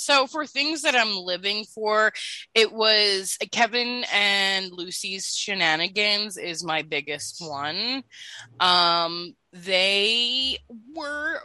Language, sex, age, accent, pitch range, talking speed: English, female, 20-39, American, 180-250 Hz, 105 wpm